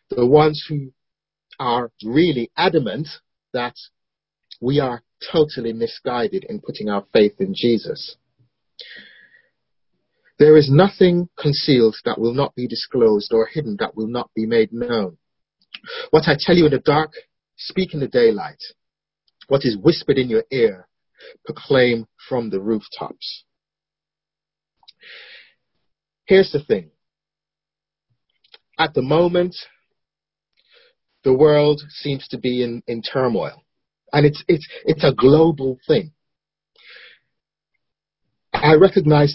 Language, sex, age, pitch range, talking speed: English, male, 40-59, 120-175 Hz, 120 wpm